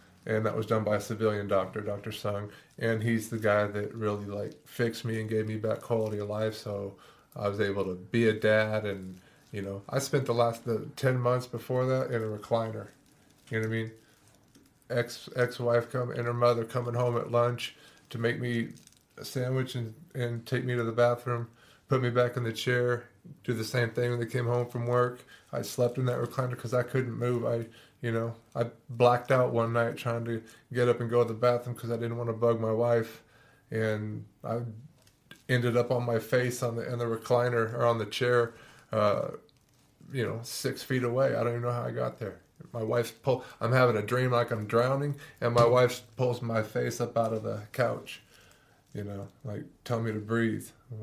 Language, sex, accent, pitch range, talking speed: English, male, American, 110-125 Hz, 220 wpm